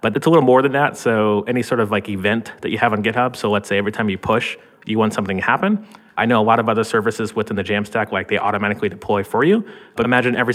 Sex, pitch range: male, 100-125 Hz